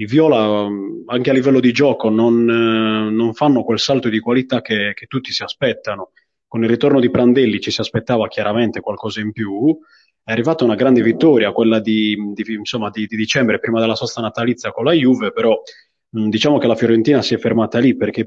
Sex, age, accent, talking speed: male, 20-39, native, 195 wpm